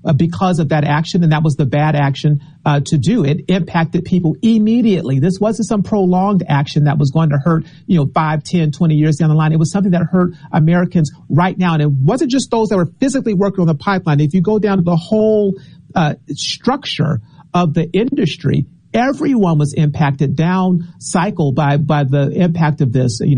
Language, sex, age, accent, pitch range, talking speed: English, male, 50-69, American, 140-170 Hz, 205 wpm